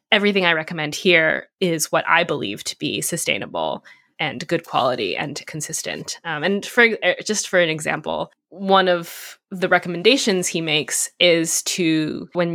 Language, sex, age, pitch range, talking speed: English, female, 20-39, 155-185 Hz, 155 wpm